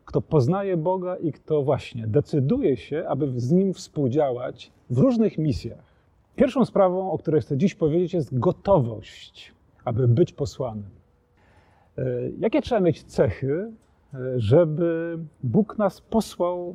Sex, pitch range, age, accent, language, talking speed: male, 140-190 Hz, 40-59, native, Polish, 125 wpm